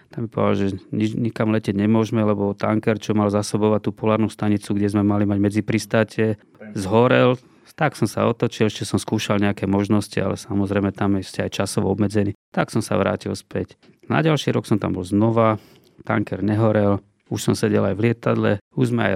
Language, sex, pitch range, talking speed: Slovak, male, 100-110 Hz, 190 wpm